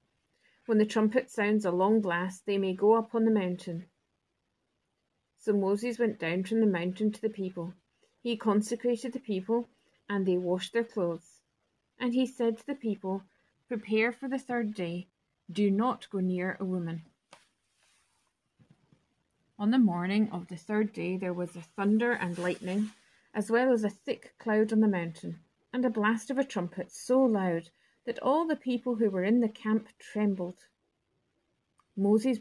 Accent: British